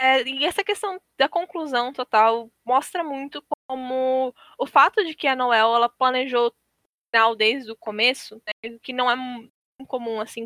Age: 10-29